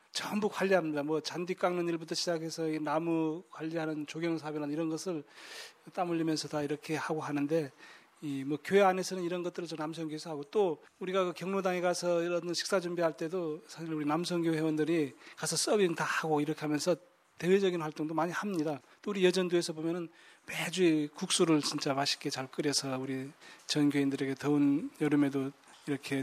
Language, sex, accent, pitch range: Korean, male, native, 145-170 Hz